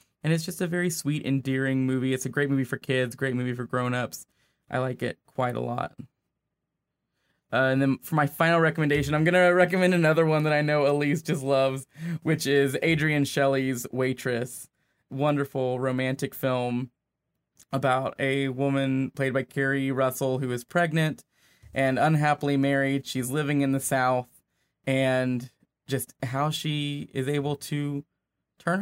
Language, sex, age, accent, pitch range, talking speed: English, male, 20-39, American, 125-145 Hz, 160 wpm